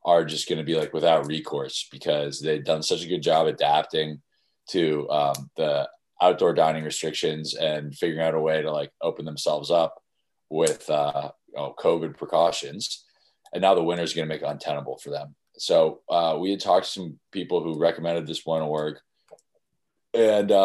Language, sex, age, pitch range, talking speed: English, male, 20-39, 75-85 Hz, 175 wpm